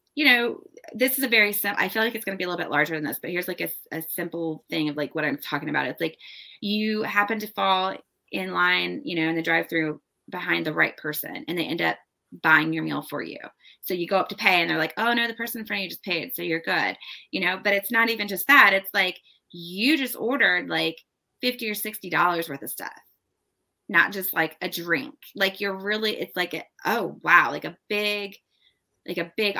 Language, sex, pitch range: English, female, 170-220 Hz